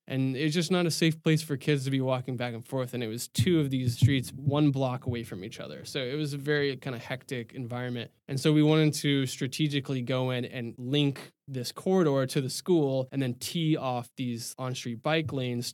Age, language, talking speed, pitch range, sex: 20-39, English, 230 wpm, 125-150 Hz, male